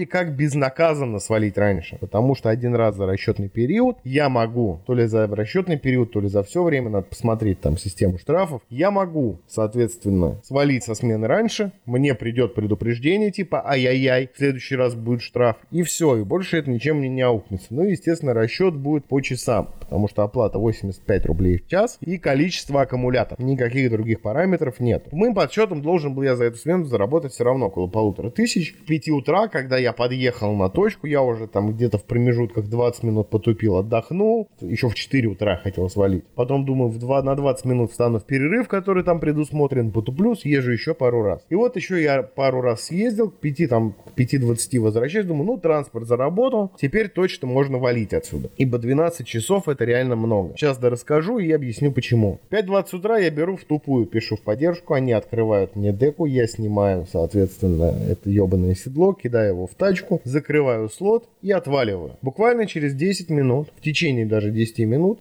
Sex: male